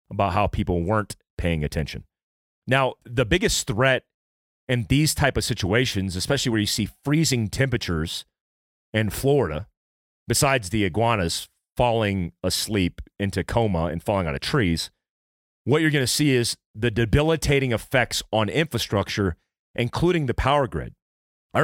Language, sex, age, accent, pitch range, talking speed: English, male, 30-49, American, 95-135 Hz, 140 wpm